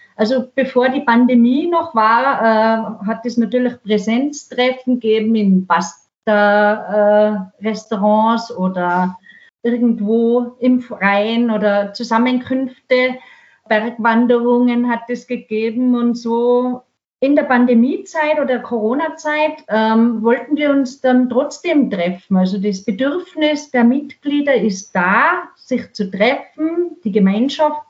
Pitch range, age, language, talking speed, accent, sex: 215-275 Hz, 40-59, German, 110 wpm, German, female